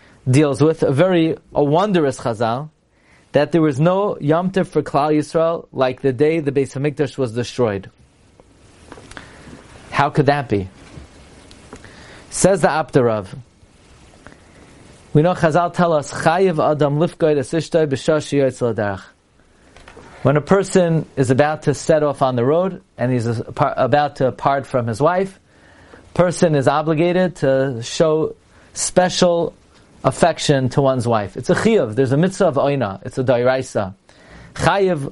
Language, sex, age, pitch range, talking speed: English, male, 40-59, 130-165 Hz, 130 wpm